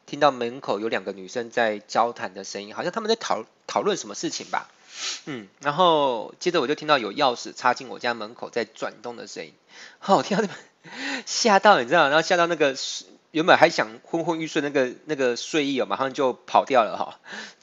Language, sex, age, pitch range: Chinese, male, 20-39, 115-160 Hz